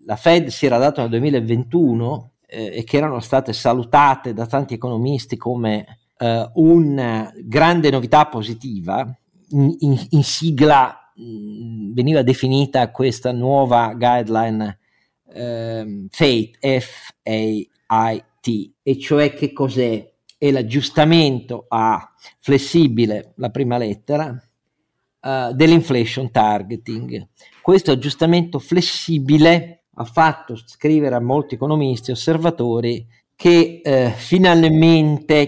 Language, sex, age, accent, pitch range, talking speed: Italian, male, 50-69, native, 115-145 Hz, 105 wpm